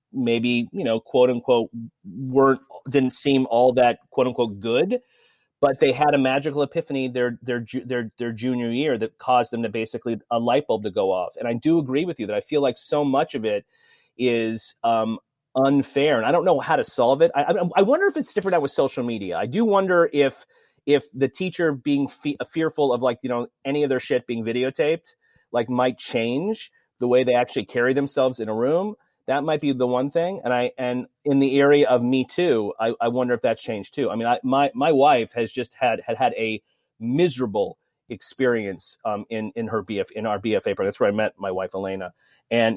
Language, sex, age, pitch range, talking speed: English, male, 30-49, 115-140 Hz, 215 wpm